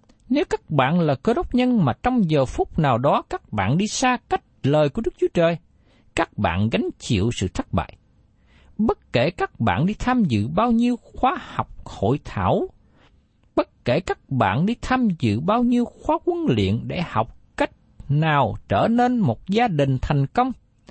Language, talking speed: Vietnamese, 190 wpm